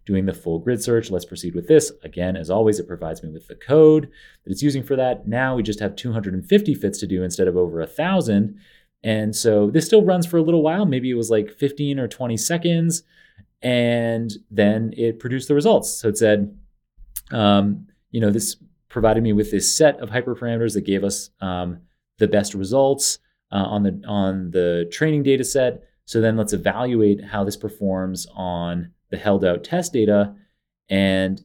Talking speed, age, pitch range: 195 wpm, 30-49, 95-130 Hz